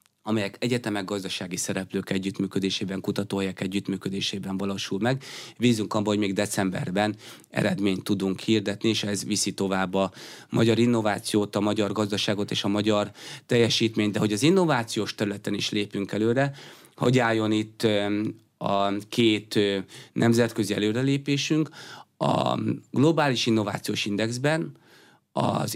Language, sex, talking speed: Hungarian, male, 120 wpm